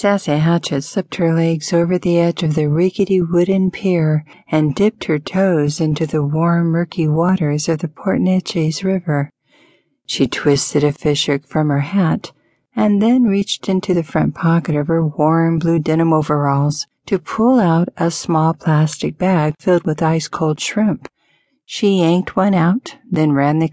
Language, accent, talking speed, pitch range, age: English, American, 160 wpm, 150-185 Hz, 60-79